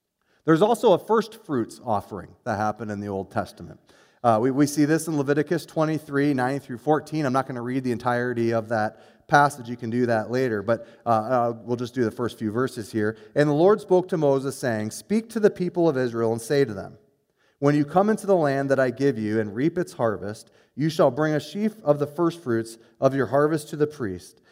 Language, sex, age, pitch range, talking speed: English, male, 30-49, 115-155 Hz, 225 wpm